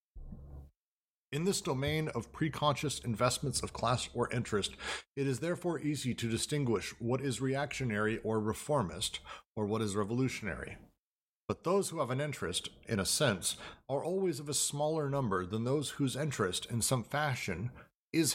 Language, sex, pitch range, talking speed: English, male, 110-145 Hz, 155 wpm